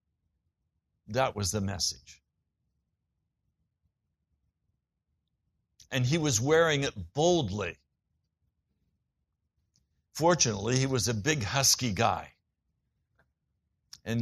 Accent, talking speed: American, 75 wpm